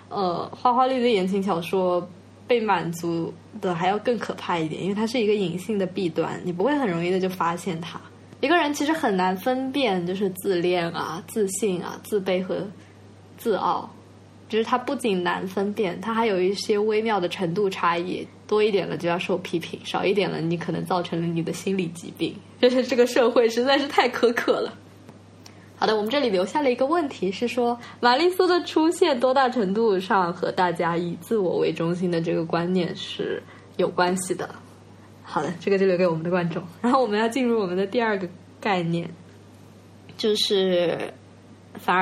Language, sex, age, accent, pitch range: Chinese, female, 10-29, native, 175-240 Hz